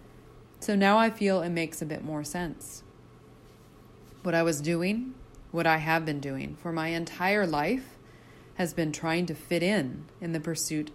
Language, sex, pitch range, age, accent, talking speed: English, female, 155-195 Hz, 30-49, American, 175 wpm